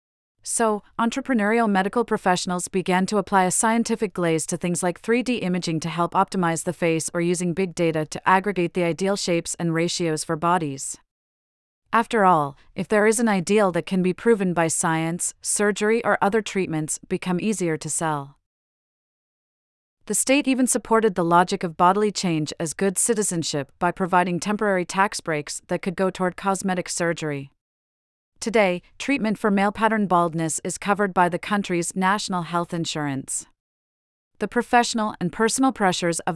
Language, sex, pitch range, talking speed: English, female, 165-205 Hz, 160 wpm